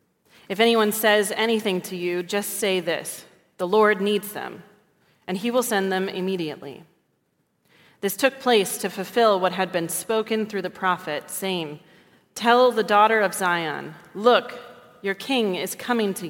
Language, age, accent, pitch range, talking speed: English, 30-49, American, 175-215 Hz, 160 wpm